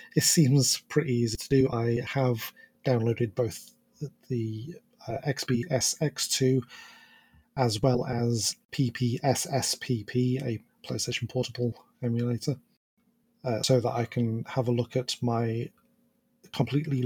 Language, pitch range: English, 115-145 Hz